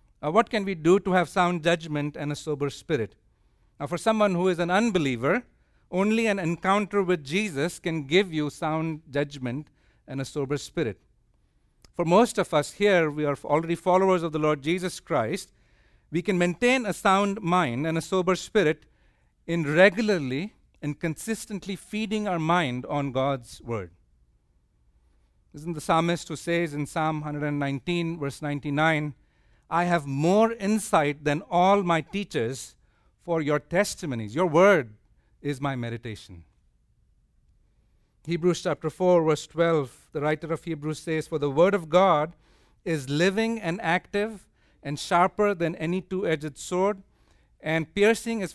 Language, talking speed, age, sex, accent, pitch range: English, 150 wpm, 50-69, male, Indian, 145-185 Hz